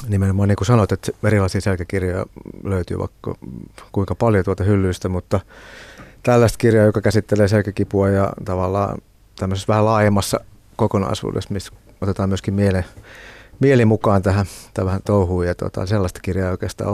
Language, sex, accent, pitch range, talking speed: Finnish, male, native, 95-110 Hz, 130 wpm